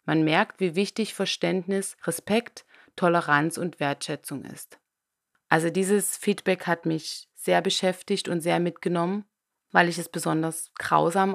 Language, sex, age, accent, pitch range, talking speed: German, female, 20-39, German, 160-180 Hz, 130 wpm